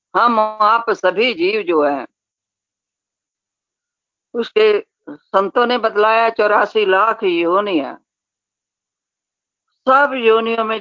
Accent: native